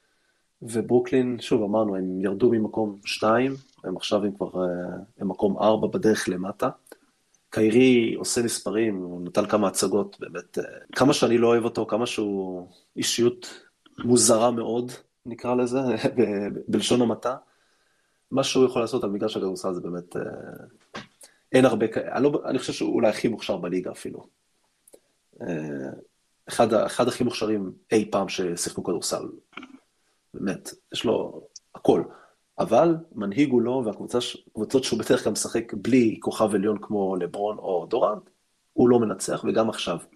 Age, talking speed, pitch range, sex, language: 30-49, 125 wpm, 100-125 Hz, male, Hebrew